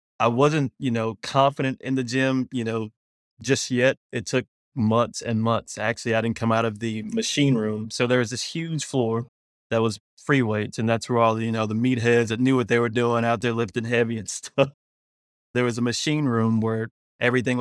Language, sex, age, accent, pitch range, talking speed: English, male, 20-39, American, 110-120 Hz, 215 wpm